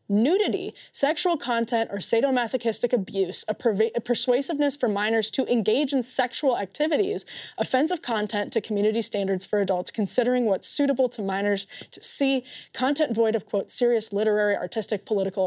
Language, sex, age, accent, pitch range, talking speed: English, female, 20-39, American, 205-265 Hz, 145 wpm